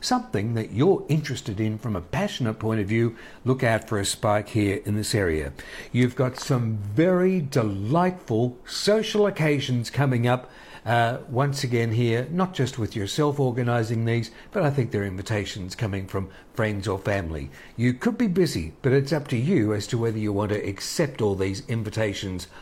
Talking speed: 180 wpm